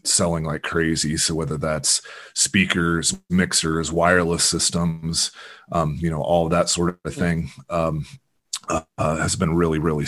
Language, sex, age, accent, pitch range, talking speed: English, male, 30-49, American, 80-90 Hz, 150 wpm